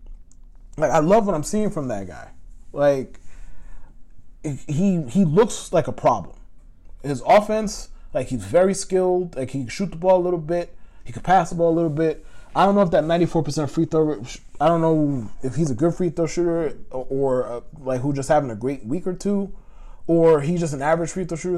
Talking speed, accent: 215 wpm, American